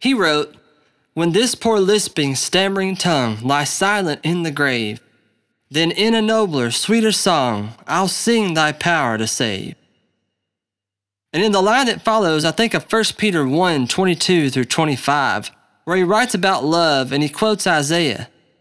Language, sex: English, male